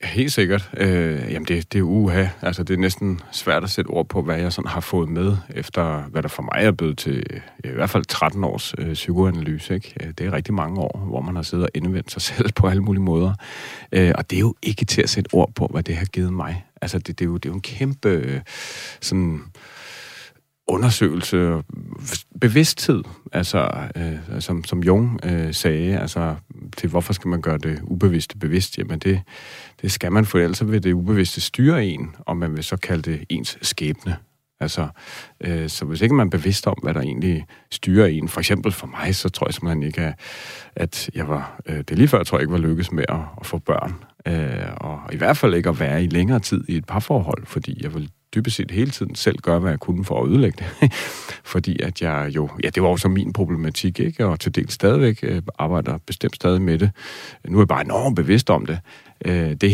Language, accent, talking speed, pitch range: Danish, native, 230 wpm, 85-100 Hz